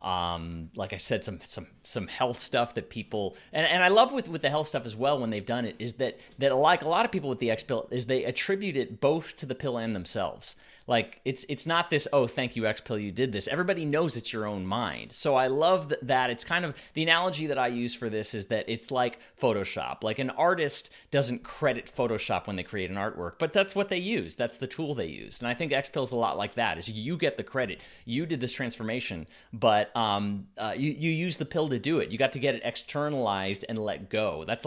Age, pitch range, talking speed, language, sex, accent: 30-49, 100-135 Hz, 250 wpm, English, male, American